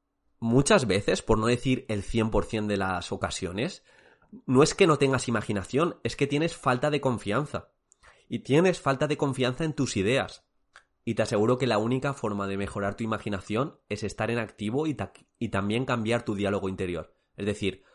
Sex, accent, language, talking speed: male, Spanish, Spanish, 180 wpm